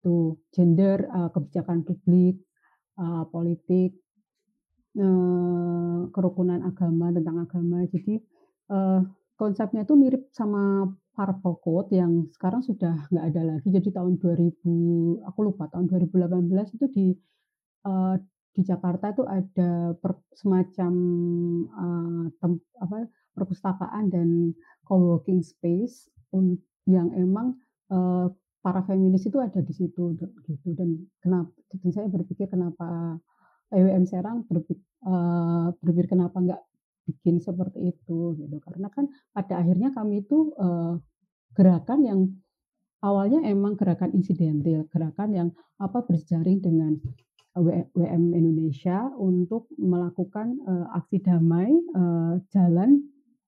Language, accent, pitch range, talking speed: Indonesian, native, 170-195 Hz, 105 wpm